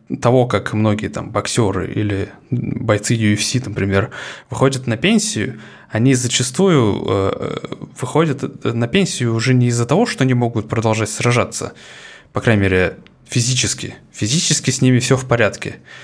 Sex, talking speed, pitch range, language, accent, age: male, 140 wpm, 105-130 Hz, Russian, native, 20-39